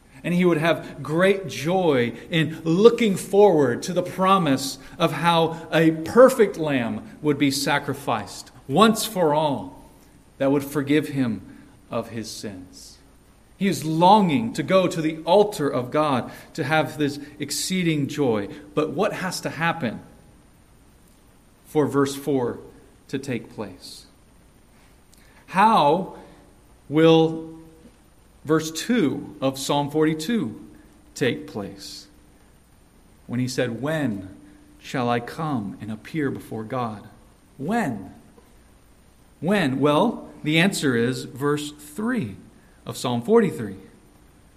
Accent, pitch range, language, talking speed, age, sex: American, 130-185 Hz, English, 115 wpm, 40-59, male